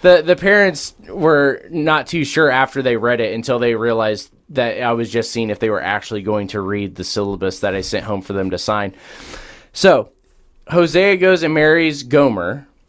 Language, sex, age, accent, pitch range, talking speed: English, male, 20-39, American, 110-145 Hz, 195 wpm